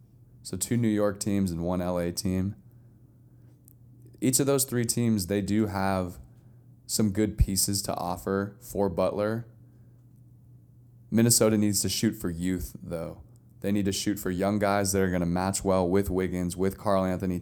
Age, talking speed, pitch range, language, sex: 20-39, 170 wpm, 90-115 Hz, English, male